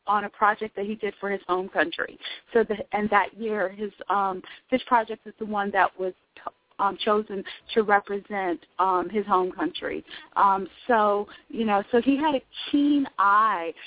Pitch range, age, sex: 200-240 Hz, 40-59, female